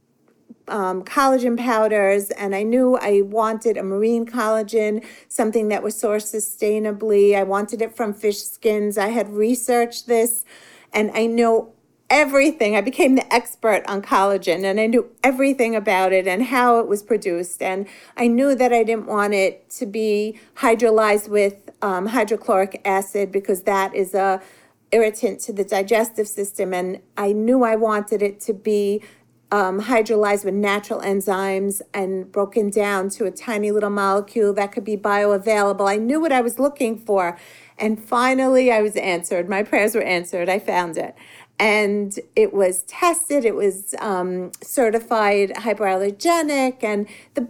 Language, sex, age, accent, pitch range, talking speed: English, female, 40-59, American, 200-240 Hz, 160 wpm